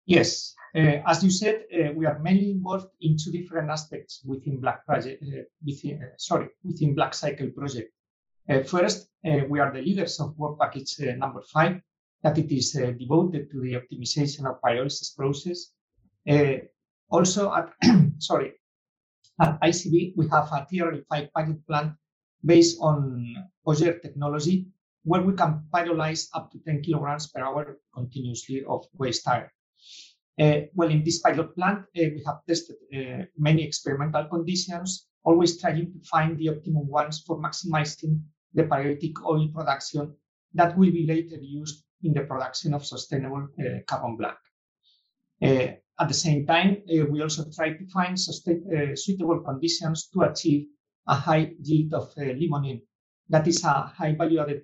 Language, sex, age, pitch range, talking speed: English, male, 50-69, 145-170 Hz, 165 wpm